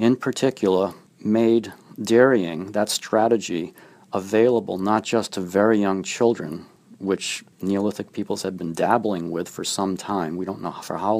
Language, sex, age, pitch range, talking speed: English, male, 40-59, 95-115 Hz, 150 wpm